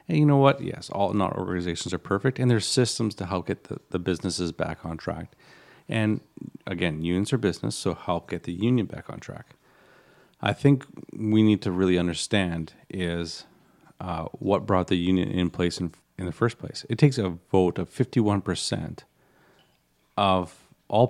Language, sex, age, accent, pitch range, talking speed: English, male, 40-59, American, 90-115 Hz, 180 wpm